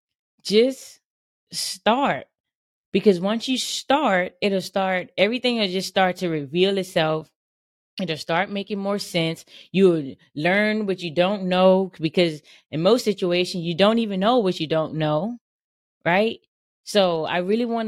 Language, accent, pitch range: English, American, 170-230 Hz